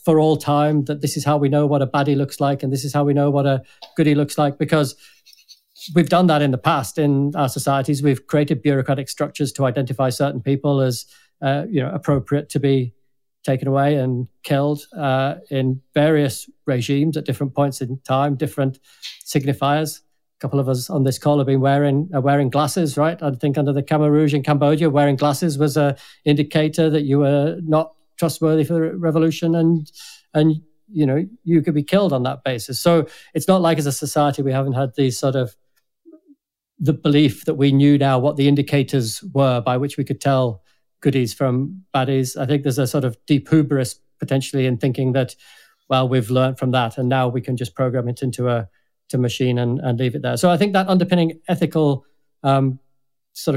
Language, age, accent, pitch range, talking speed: English, 40-59, British, 135-155 Hz, 205 wpm